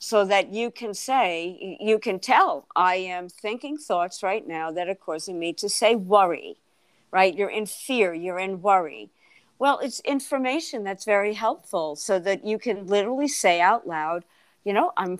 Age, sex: 50-69, female